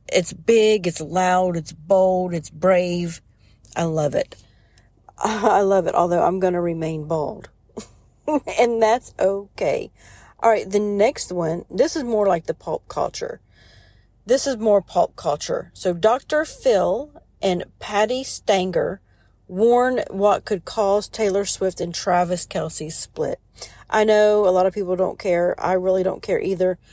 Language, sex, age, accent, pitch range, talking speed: English, female, 40-59, American, 175-210 Hz, 155 wpm